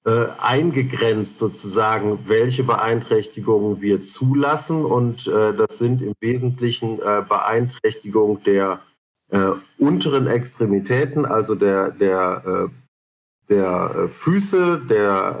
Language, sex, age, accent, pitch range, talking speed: German, male, 50-69, German, 115-140 Hz, 95 wpm